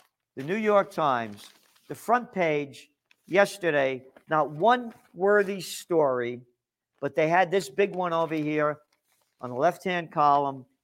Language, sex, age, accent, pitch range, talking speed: English, male, 50-69, American, 125-185 Hz, 135 wpm